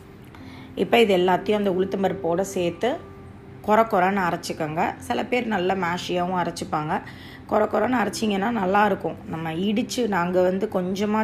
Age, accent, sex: 20-39, native, female